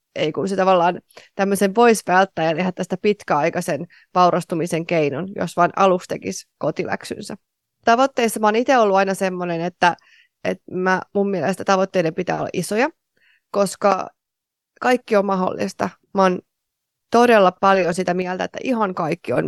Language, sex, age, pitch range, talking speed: Finnish, female, 20-39, 180-205 Hz, 140 wpm